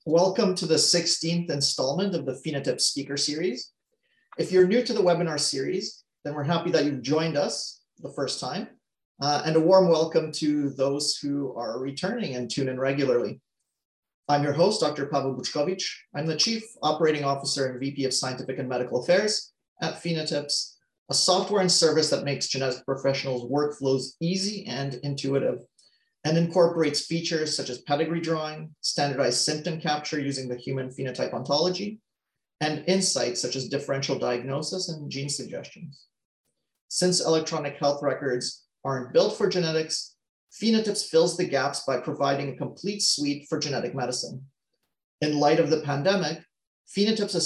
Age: 30-49